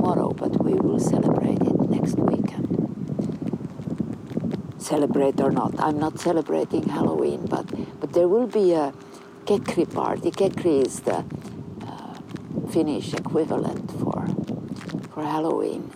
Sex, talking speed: female, 105 wpm